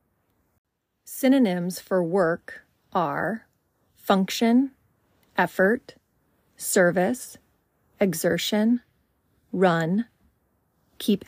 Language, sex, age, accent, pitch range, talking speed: English, female, 30-49, American, 180-225 Hz, 55 wpm